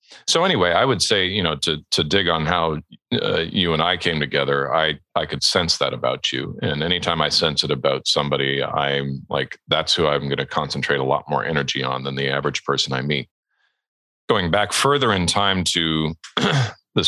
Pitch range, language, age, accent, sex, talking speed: 75-85 Hz, English, 40-59, American, male, 205 wpm